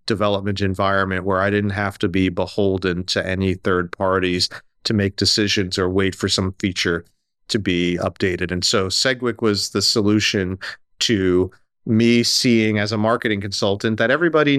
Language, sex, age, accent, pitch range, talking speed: English, male, 30-49, American, 100-115 Hz, 160 wpm